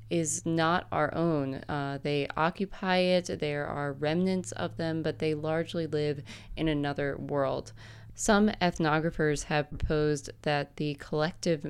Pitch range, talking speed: 145-160 Hz, 140 wpm